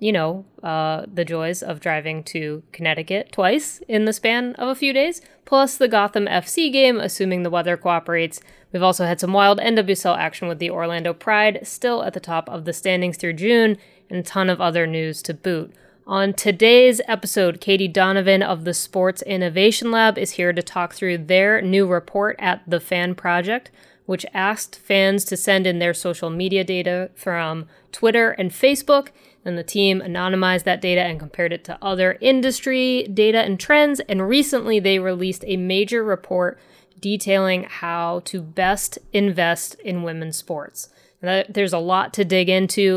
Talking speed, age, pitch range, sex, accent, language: 180 wpm, 20-39, 175-210 Hz, female, American, English